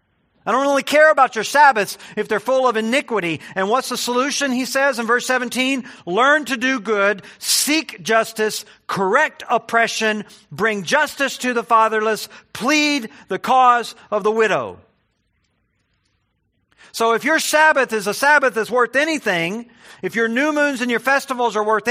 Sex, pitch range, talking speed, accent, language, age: male, 175-245 Hz, 160 wpm, American, English, 50-69